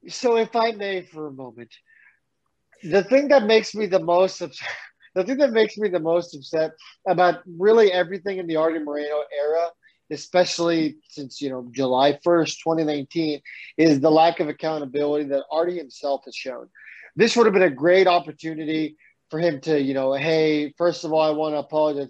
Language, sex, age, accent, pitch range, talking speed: English, male, 30-49, American, 150-185 Hz, 180 wpm